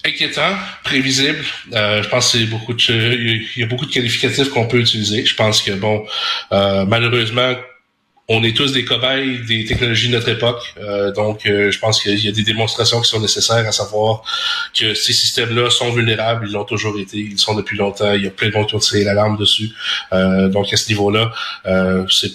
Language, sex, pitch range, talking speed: French, male, 105-125 Hz, 220 wpm